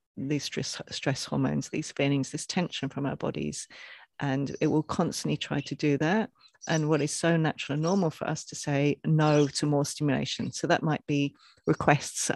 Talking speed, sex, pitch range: 190 wpm, female, 145-165 Hz